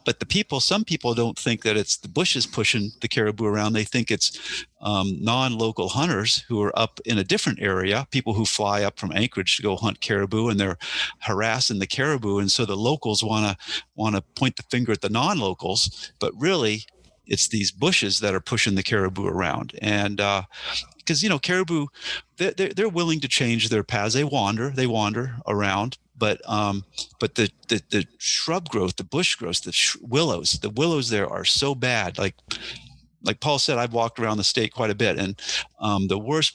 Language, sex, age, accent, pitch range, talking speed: English, male, 50-69, American, 100-125 Hz, 200 wpm